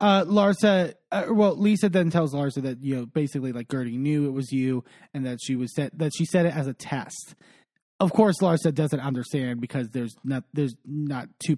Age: 20-39